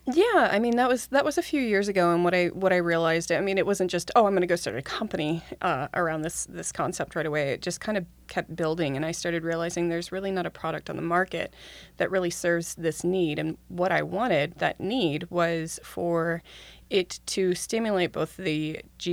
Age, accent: 20-39, American